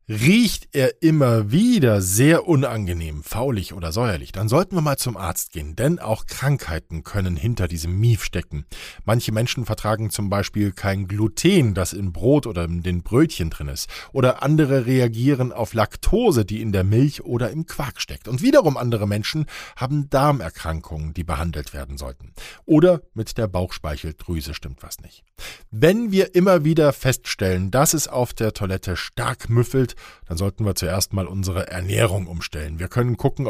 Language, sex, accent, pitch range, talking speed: German, male, German, 90-130 Hz, 165 wpm